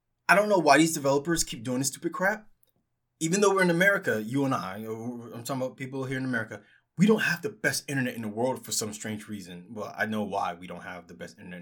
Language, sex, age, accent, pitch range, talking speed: English, male, 20-39, American, 125-175 Hz, 255 wpm